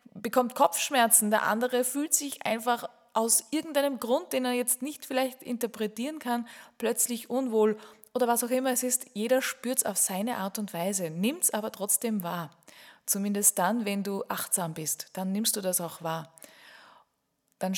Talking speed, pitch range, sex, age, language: 170 wpm, 190-250 Hz, female, 20-39, German